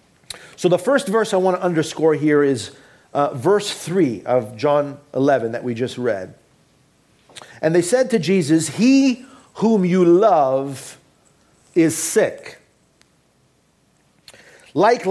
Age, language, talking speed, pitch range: 50-69, English, 125 wpm, 150-210 Hz